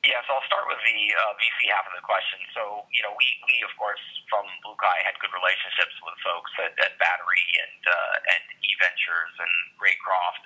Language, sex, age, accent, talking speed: English, male, 30-49, American, 210 wpm